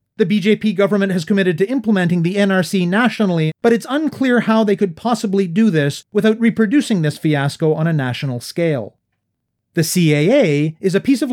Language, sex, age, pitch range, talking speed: English, male, 30-49, 150-210 Hz, 175 wpm